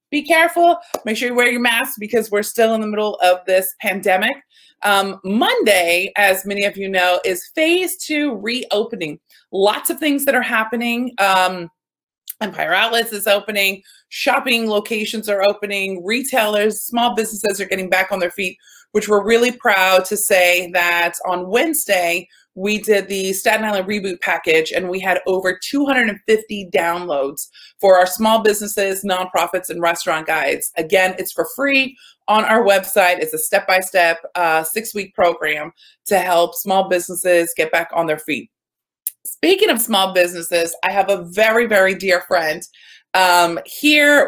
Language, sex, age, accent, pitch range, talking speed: English, female, 20-39, American, 180-225 Hz, 155 wpm